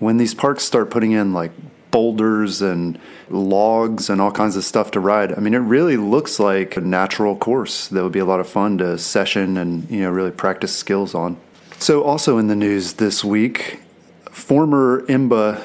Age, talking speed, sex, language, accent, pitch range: 30-49, 195 wpm, male, English, American, 95-115 Hz